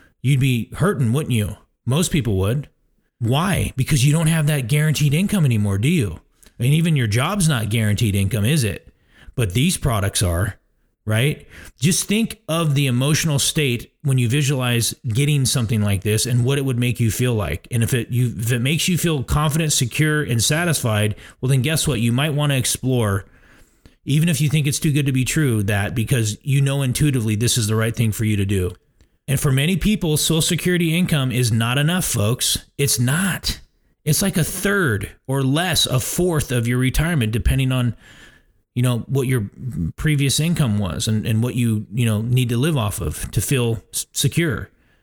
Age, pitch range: 30-49, 110-150 Hz